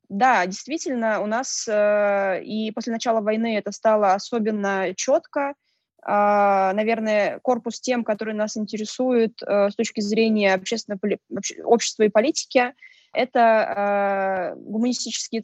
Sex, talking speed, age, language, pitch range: female, 115 wpm, 20-39, Russian, 200-240 Hz